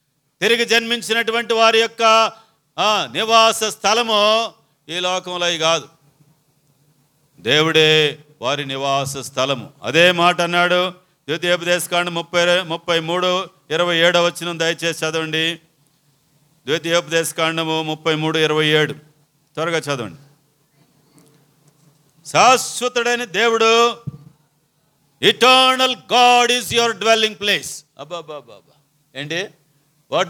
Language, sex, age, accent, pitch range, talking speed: Telugu, male, 50-69, native, 145-195 Hz, 90 wpm